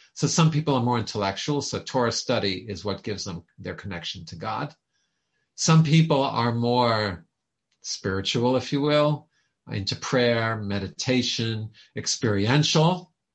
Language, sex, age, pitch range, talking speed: English, male, 50-69, 105-150 Hz, 130 wpm